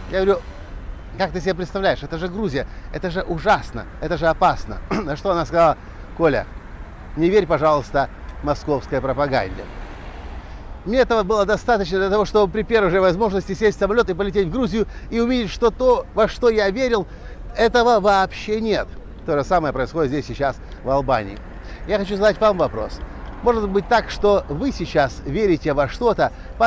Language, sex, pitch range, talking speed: Russian, male, 155-220 Hz, 175 wpm